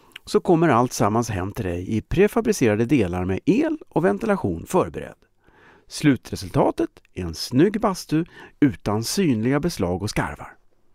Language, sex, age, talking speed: Swedish, male, 50-69, 135 wpm